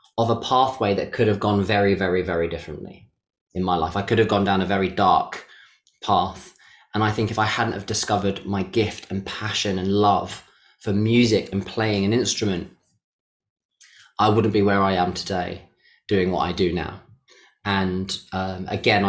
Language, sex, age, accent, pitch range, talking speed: English, male, 20-39, British, 100-115 Hz, 180 wpm